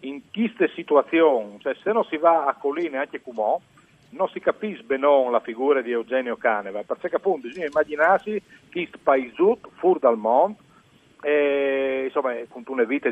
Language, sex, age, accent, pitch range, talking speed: Italian, male, 50-69, native, 135-195 Hz, 170 wpm